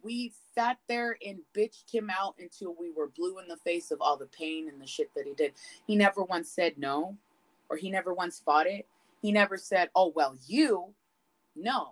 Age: 20-39